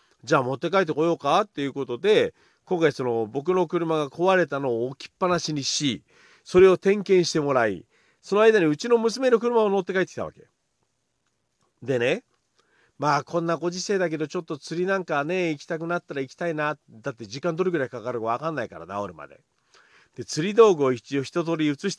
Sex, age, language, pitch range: male, 40-59, Japanese, 140-195 Hz